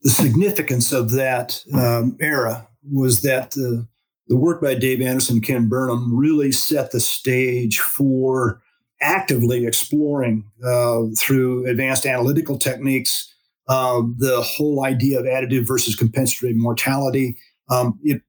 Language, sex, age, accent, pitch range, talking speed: English, male, 50-69, American, 120-140 Hz, 130 wpm